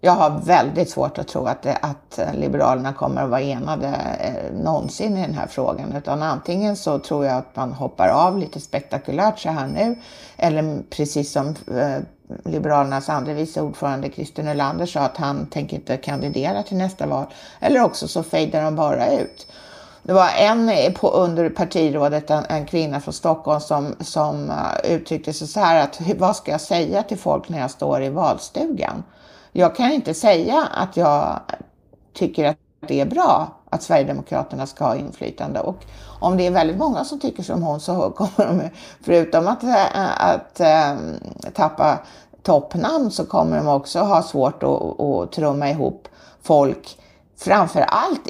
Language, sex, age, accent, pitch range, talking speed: Swedish, female, 60-79, native, 150-205 Hz, 170 wpm